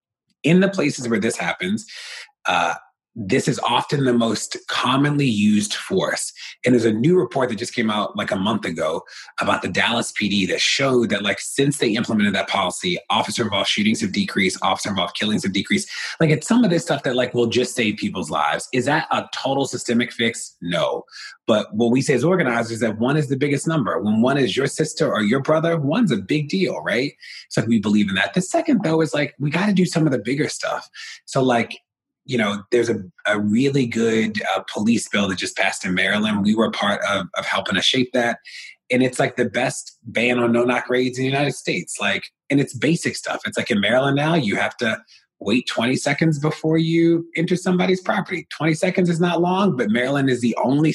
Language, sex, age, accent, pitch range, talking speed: English, male, 30-49, American, 120-175 Hz, 215 wpm